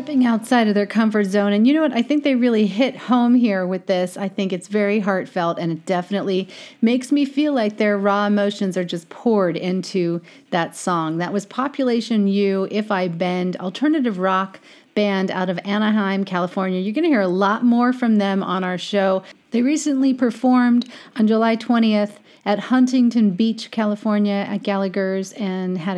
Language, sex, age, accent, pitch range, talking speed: English, female, 40-59, American, 190-240 Hz, 185 wpm